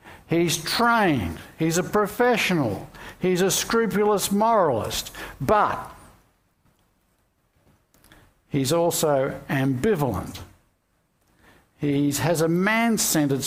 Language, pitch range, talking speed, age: English, 135-185 Hz, 75 wpm, 60-79